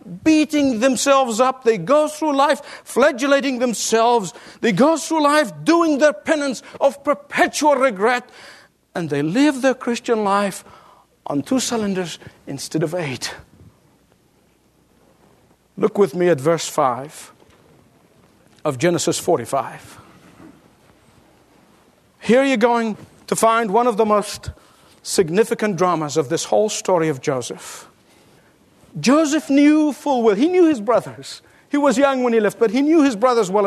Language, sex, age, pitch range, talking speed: English, male, 50-69, 205-285 Hz, 135 wpm